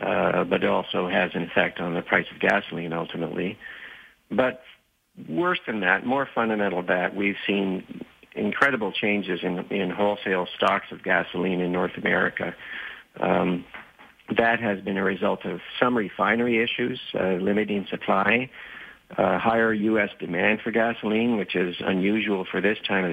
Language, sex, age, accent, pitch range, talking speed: English, male, 50-69, American, 90-105 Hz, 155 wpm